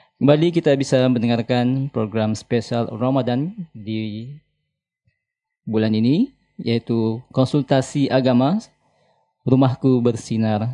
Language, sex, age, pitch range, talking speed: Indonesian, male, 20-39, 110-145 Hz, 85 wpm